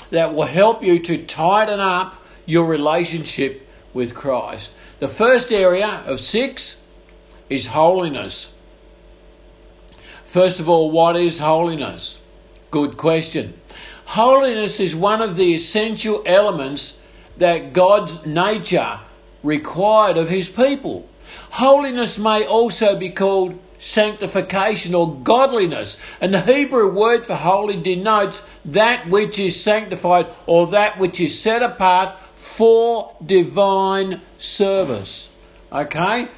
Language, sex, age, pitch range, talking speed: English, male, 50-69, 170-215 Hz, 115 wpm